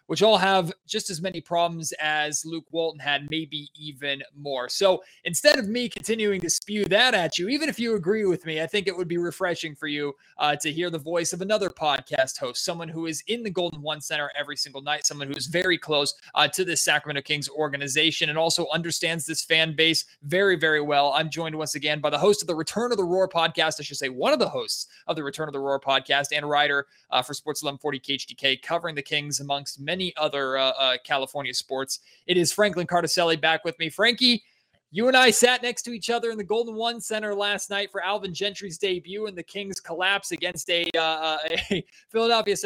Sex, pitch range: male, 150-195 Hz